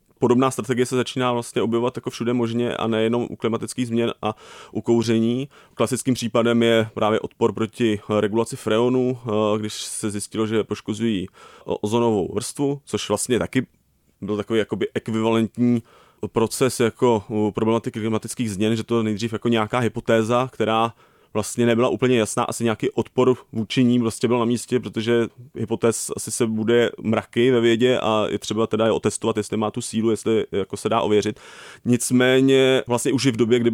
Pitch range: 105-120 Hz